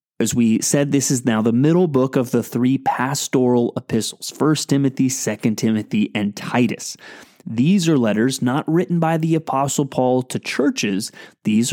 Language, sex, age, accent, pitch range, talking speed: English, male, 20-39, American, 115-150 Hz, 165 wpm